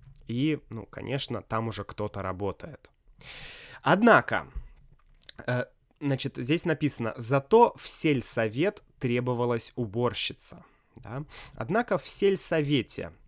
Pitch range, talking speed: 115-145 Hz, 85 wpm